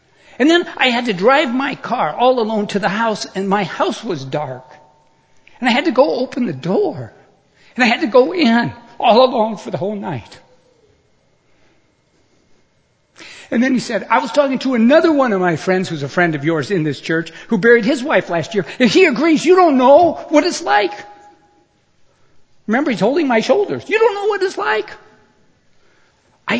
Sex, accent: male, American